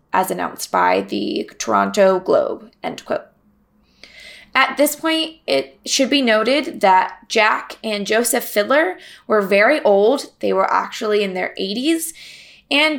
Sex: female